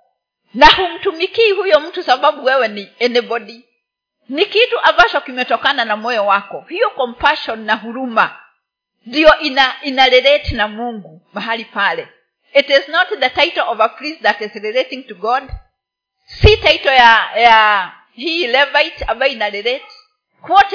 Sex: female